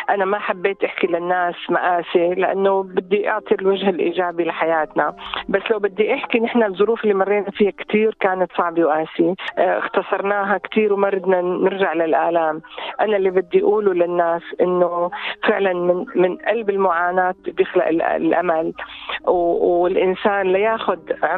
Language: Arabic